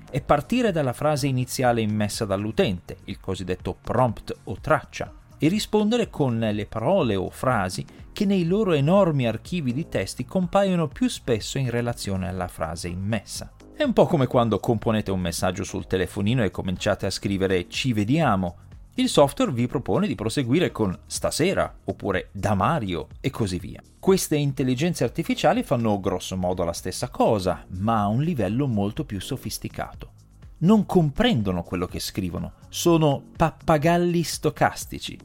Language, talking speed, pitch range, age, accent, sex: Italian, 150 wpm, 95-140 Hz, 40-59, native, male